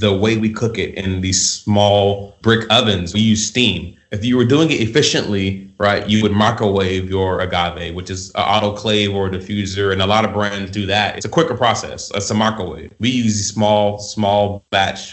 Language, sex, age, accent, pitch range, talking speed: English, male, 20-39, American, 100-115 Hz, 200 wpm